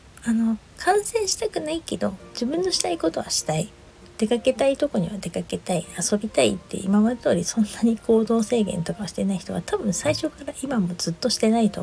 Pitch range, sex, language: 180-225 Hz, female, Japanese